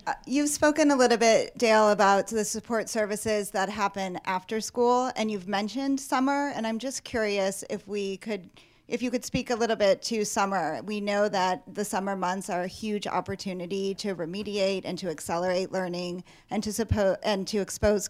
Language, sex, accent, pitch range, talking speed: English, female, American, 170-215 Hz, 185 wpm